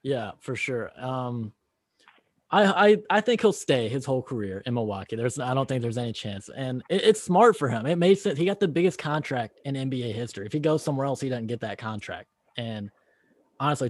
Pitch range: 115-150 Hz